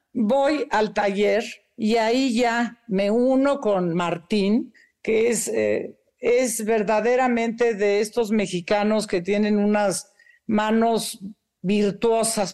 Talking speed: 110 wpm